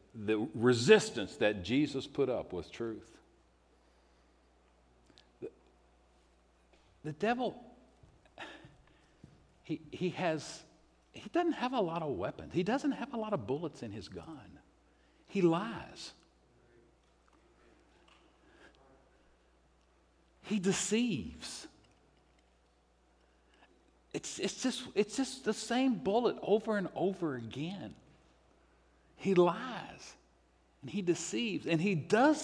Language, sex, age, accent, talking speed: English, male, 60-79, American, 100 wpm